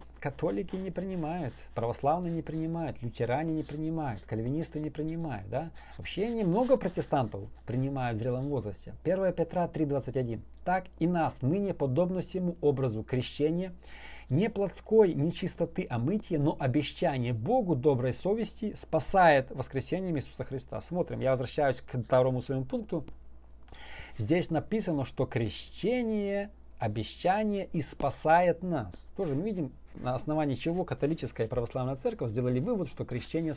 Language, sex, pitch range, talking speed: Russian, male, 120-170 Hz, 130 wpm